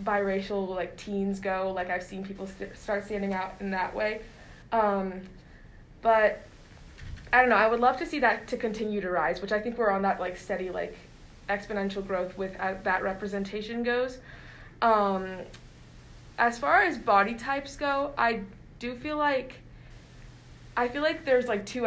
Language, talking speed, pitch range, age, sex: English, 170 wpm, 190-225 Hz, 20-39, female